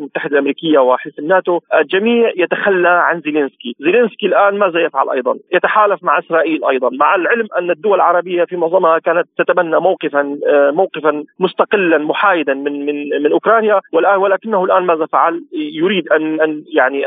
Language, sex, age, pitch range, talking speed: Arabic, male, 40-59, 150-190 Hz, 145 wpm